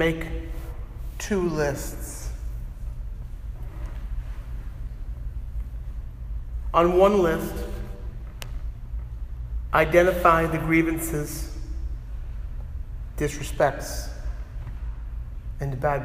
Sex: male